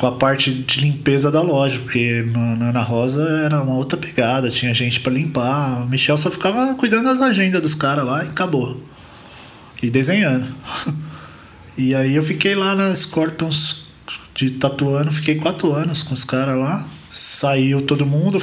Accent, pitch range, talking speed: Brazilian, 135-180 Hz, 170 wpm